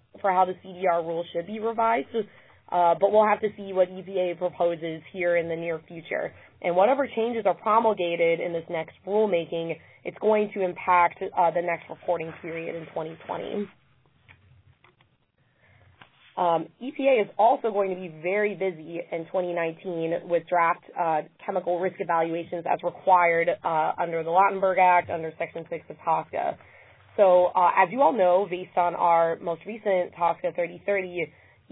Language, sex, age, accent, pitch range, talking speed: English, female, 20-39, American, 165-190 Hz, 160 wpm